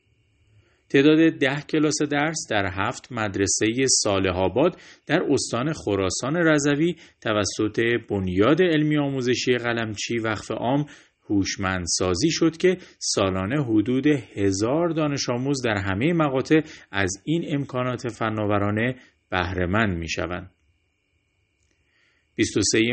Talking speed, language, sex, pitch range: 100 wpm, English, male, 100-140 Hz